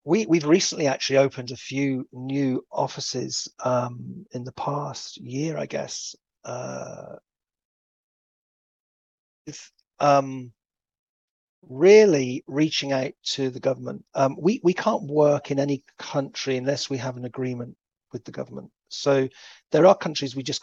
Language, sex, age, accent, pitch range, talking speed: English, male, 40-59, British, 130-150 Hz, 140 wpm